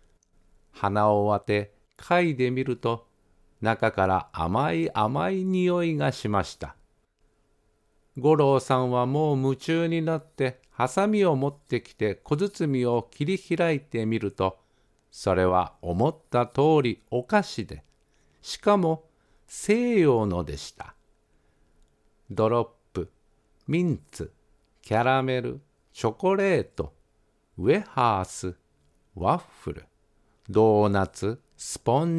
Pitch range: 105-150 Hz